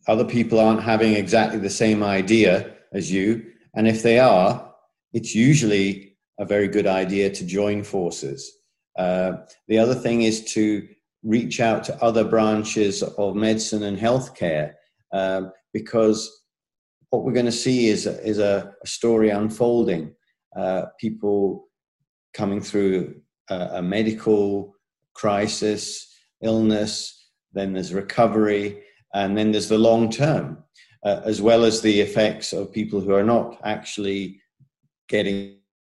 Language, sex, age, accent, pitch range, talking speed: English, male, 40-59, British, 100-115 Hz, 135 wpm